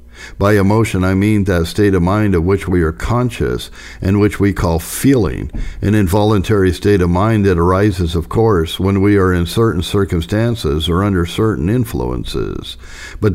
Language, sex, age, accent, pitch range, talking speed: English, male, 60-79, American, 90-110 Hz, 170 wpm